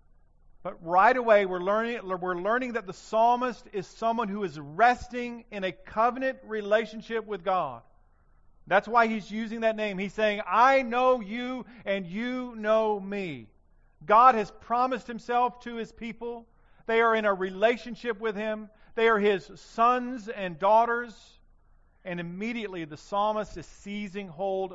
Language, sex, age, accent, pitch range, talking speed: English, male, 50-69, American, 145-220 Hz, 150 wpm